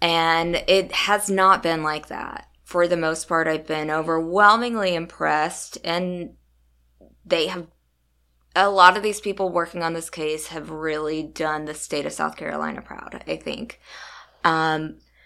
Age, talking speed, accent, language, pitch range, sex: 20-39, 155 wpm, American, English, 160-200 Hz, female